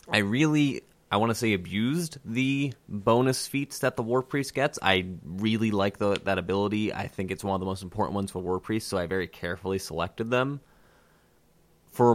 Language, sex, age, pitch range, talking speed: English, male, 20-39, 95-115 Hz, 190 wpm